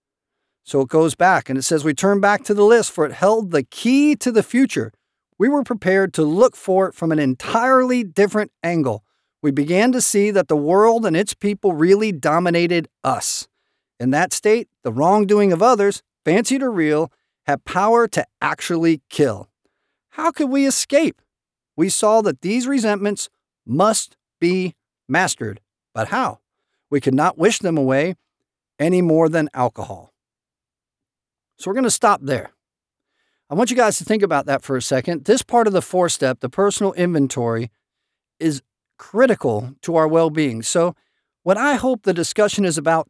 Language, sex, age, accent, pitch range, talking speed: English, male, 50-69, American, 150-210 Hz, 170 wpm